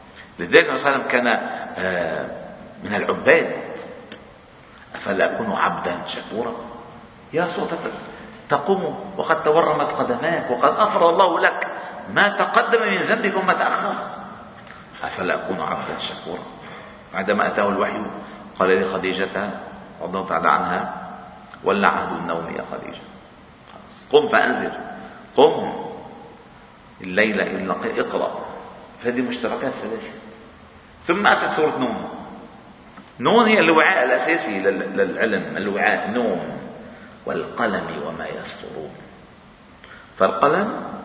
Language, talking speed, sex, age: Arabic, 95 wpm, male, 50-69